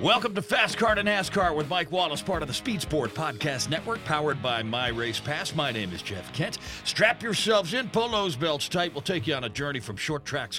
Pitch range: 120-175 Hz